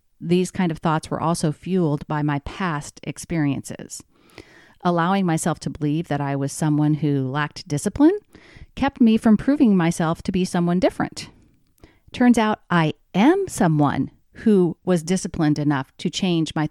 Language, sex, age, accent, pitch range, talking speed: English, female, 40-59, American, 155-215 Hz, 155 wpm